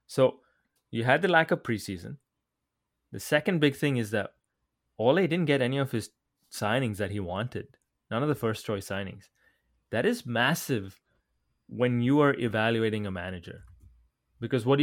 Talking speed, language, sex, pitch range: 165 wpm, English, male, 105-140 Hz